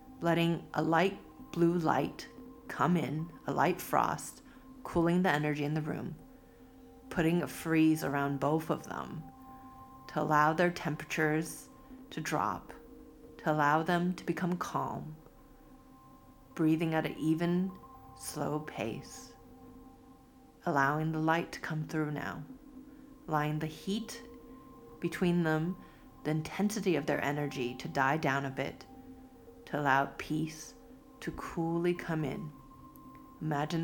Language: English